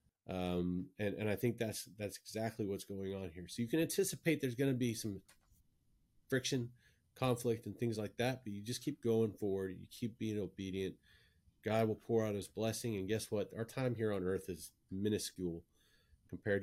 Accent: American